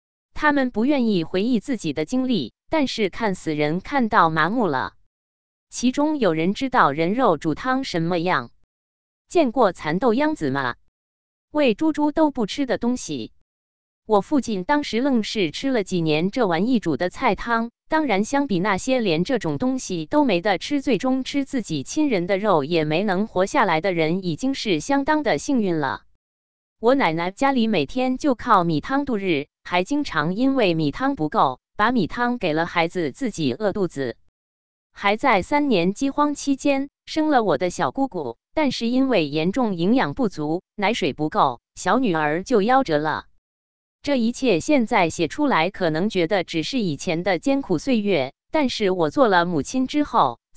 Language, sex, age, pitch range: Chinese, female, 20-39, 160-260 Hz